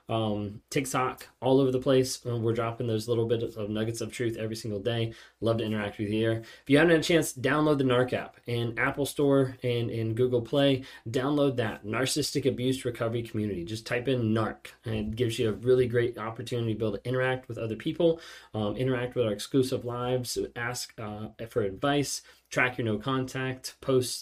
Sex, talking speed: male, 205 wpm